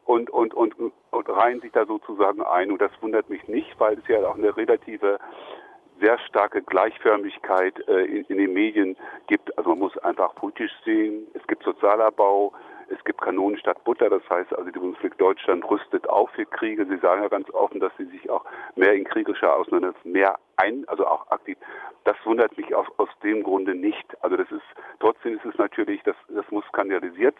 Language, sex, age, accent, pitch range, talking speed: German, male, 50-69, German, 320-410 Hz, 195 wpm